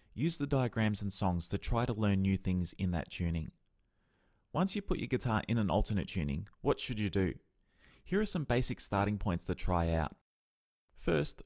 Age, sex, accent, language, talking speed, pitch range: 20-39, male, Australian, English, 195 wpm, 95-125 Hz